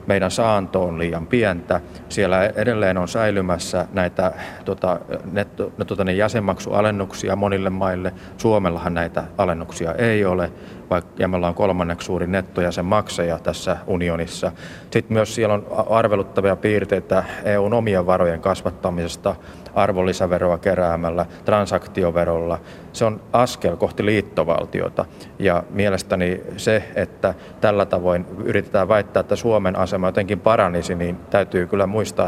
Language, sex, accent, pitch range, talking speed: Finnish, male, native, 90-105 Hz, 125 wpm